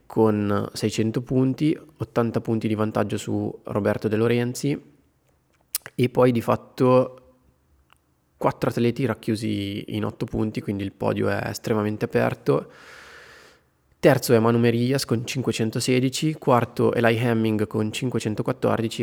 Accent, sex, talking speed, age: native, male, 125 wpm, 20-39